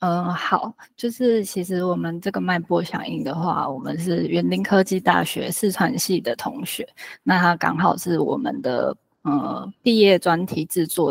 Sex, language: female, Chinese